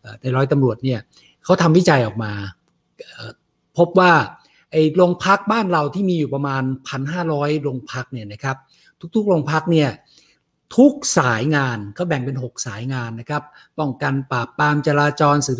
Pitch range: 130-175 Hz